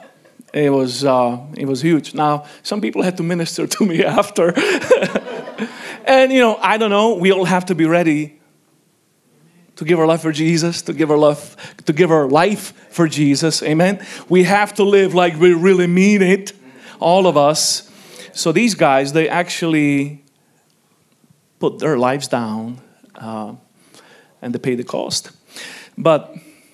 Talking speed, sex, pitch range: 160 wpm, male, 160-205 Hz